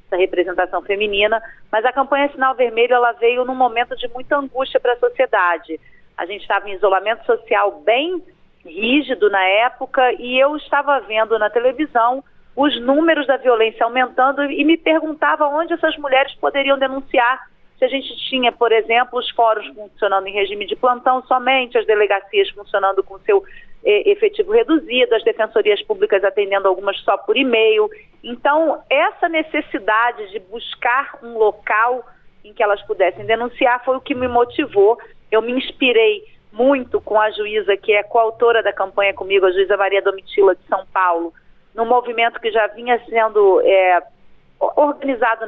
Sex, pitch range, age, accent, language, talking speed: female, 205-270 Hz, 40-59, Brazilian, Portuguese, 160 wpm